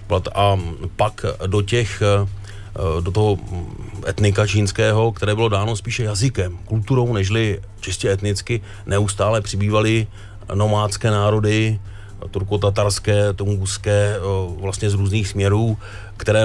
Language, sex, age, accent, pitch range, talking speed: Czech, male, 30-49, native, 95-105 Hz, 100 wpm